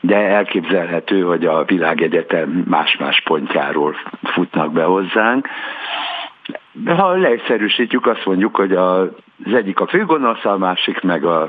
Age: 60-79